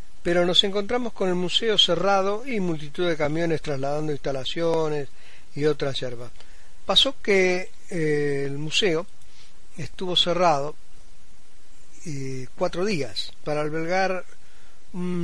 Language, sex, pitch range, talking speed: Spanish, male, 140-185 Hz, 115 wpm